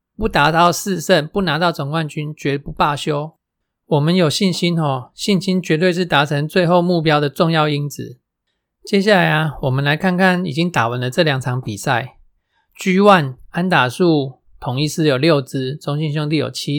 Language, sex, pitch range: Chinese, male, 140-175 Hz